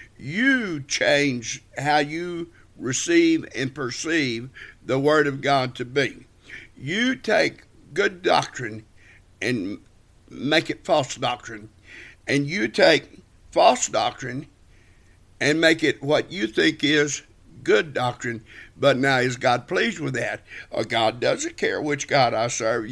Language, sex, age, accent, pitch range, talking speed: English, male, 60-79, American, 110-150 Hz, 130 wpm